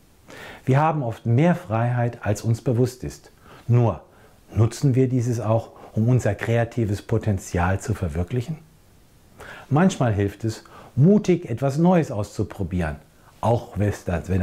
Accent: German